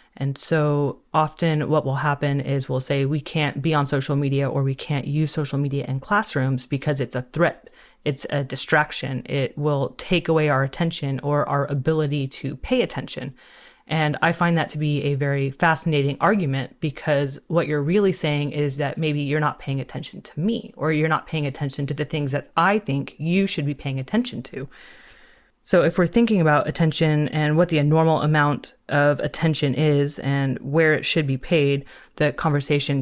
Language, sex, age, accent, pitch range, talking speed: English, female, 30-49, American, 140-160 Hz, 190 wpm